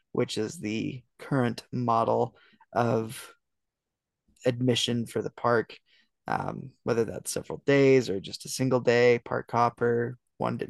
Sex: male